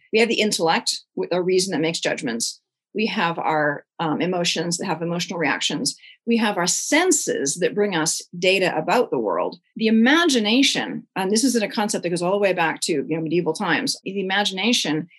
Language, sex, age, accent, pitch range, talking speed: English, female, 40-59, American, 175-235 Hz, 200 wpm